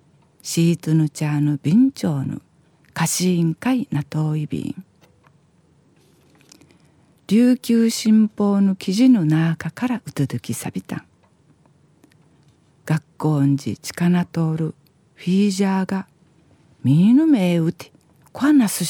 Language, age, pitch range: Japanese, 50-69, 150-205 Hz